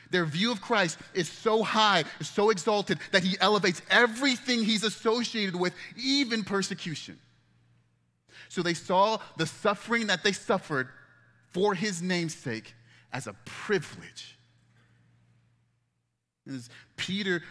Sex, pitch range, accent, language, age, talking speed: male, 110-150 Hz, American, English, 30-49, 115 wpm